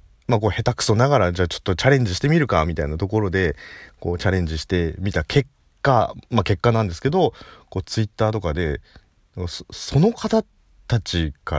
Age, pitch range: 40-59, 80-120 Hz